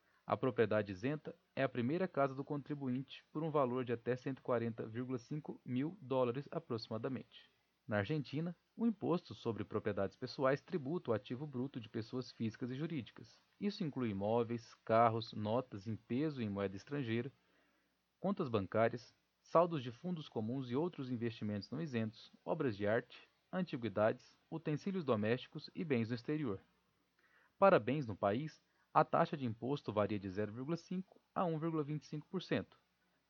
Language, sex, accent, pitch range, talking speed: Portuguese, male, Brazilian, 115-155 Hz, 140 wpm